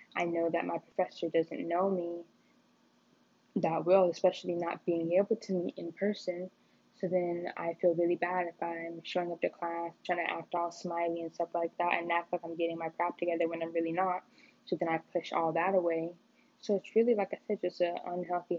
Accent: American